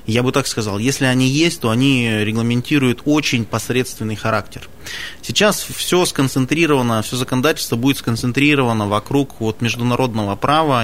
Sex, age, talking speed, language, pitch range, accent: male, 20-39, 135 wpm, Russian, 115-145 Hz, native